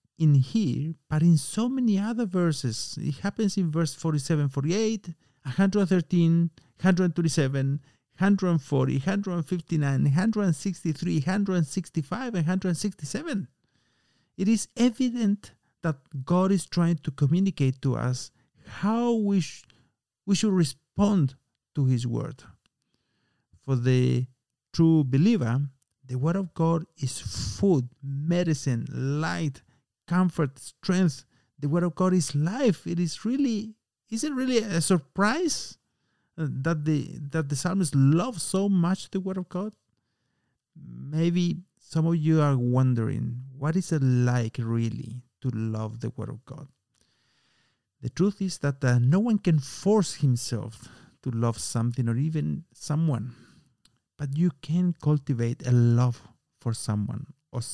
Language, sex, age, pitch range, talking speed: Spanish, male, 50-69, 130-180 Hz, 125 wpm